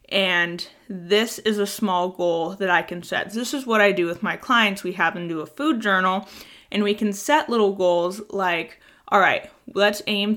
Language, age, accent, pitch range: English, 20-39, American, 180-220 Hz